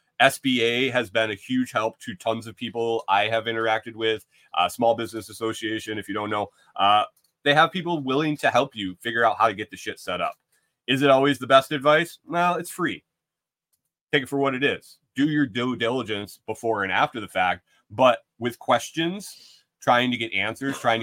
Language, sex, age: English, male, 30-49